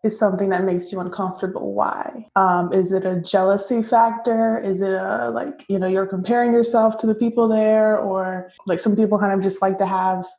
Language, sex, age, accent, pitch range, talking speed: English, female, 20-39, American, 190-225 Hz, 210 wpm